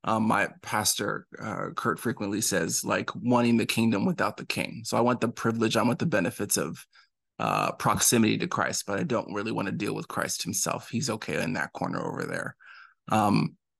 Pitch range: 115-125 Hz